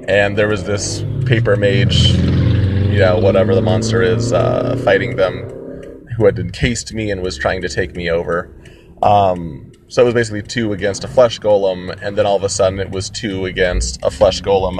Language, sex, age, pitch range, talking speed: English, male, 30-49, 95-120 Hz, 200 wpm